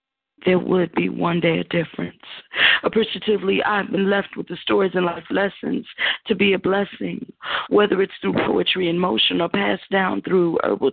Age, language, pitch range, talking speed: 40-59, English, 180-215 Hz, 175 wpm